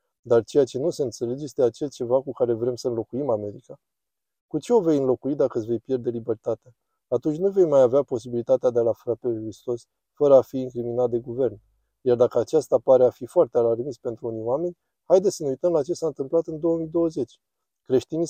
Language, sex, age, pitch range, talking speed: Romanian, male, 20-39, 125-155 Hz, 210 wpm